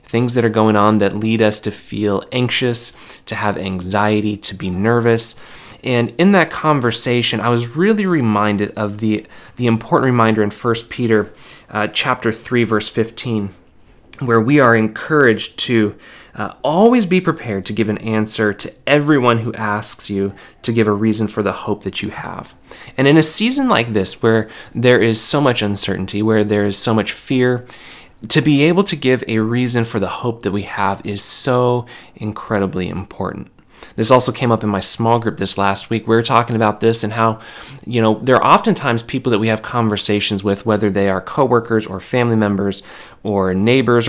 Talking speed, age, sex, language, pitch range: 190 wpm, 20-39, male, English, 105-120 Hz